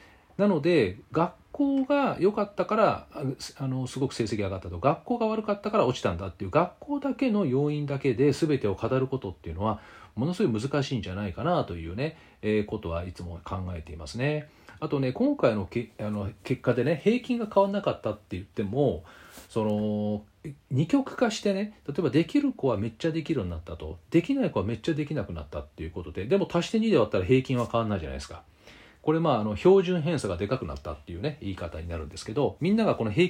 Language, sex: Japanese, male